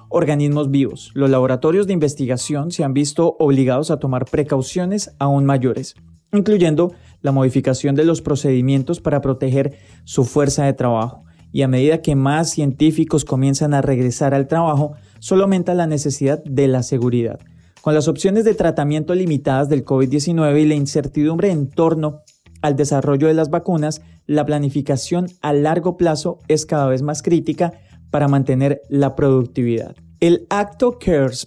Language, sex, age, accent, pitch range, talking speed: Spanish, male, 30-49, Colombian, 135-165 Hz, 155 wpm